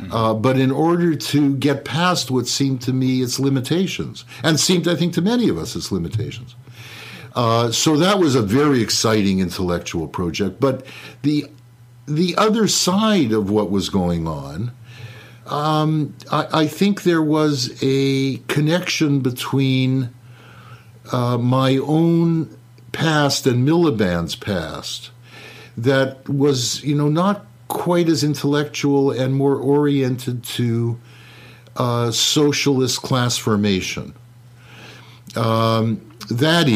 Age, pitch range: 60-79, 115-145 Hz